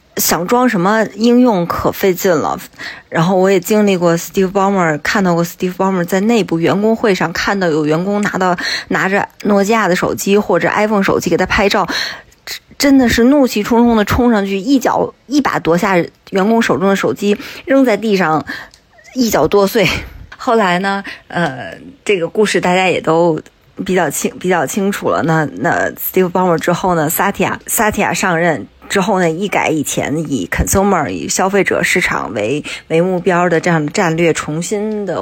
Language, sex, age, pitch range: Chinese, female, 20-39, 170-210 Hz